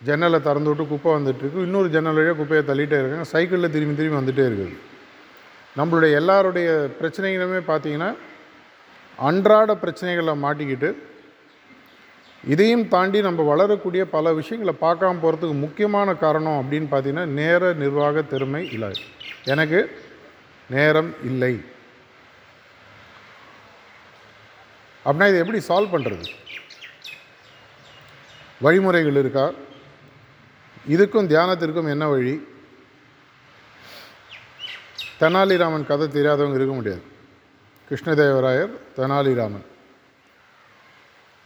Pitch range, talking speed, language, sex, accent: 135-165 Hz, 85 wpm, Tamil, male, native